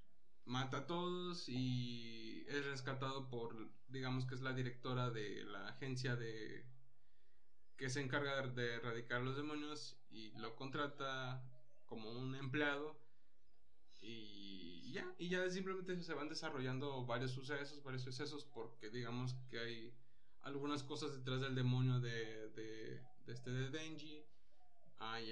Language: Spanish